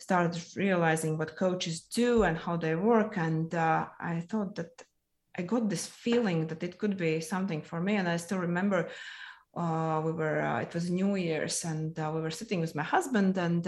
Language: English